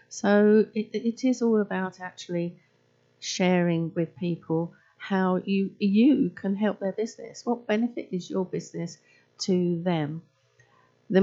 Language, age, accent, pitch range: English, 50-69, British, 165-215 Hz